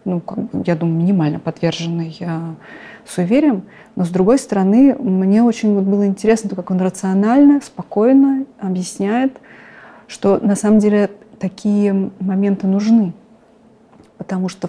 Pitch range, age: 180-225 Hz, 30-49